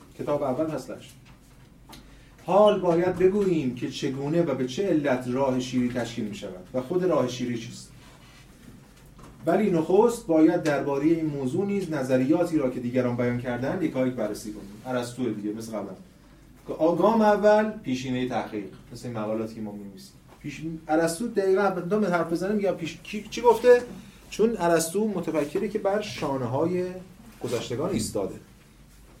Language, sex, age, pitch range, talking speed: Persian, male, 30-49, 125-190 Hz, 140 wpm